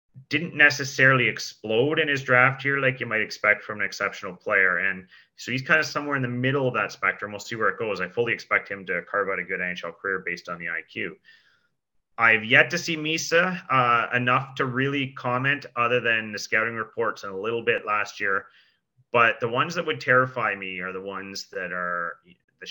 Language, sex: English, male